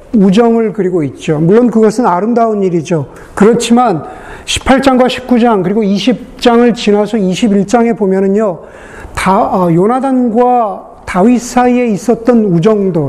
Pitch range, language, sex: 190-240 Hz, Korean, male